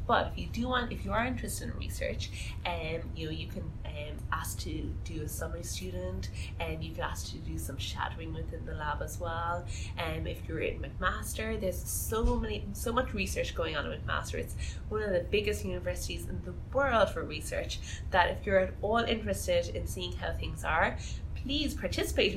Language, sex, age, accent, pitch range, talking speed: English, female, 20-39, Irish, 80-95 Hz, 205 wpm